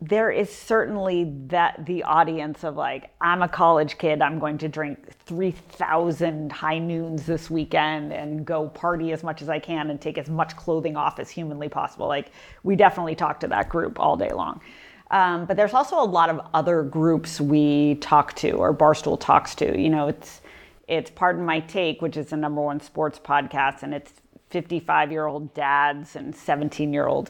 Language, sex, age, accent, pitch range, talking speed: English, female, 30-49, American, 150-170 Hz, 185 wpm